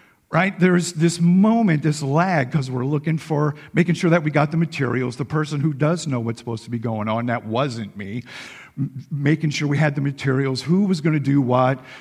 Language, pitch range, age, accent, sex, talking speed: English, 135-180 Hz, 50-69, American, male, 215 wpm